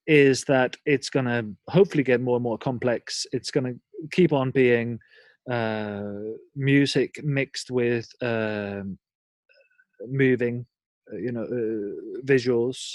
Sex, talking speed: male, 125 wpm